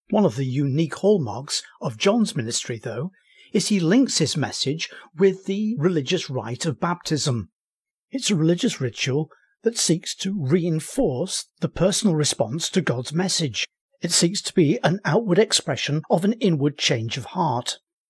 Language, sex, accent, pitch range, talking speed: English, male, British, 135-200 Hz, 155 wpm